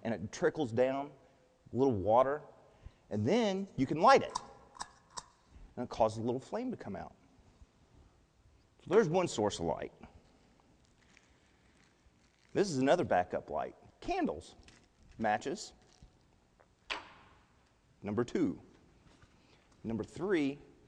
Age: 40-59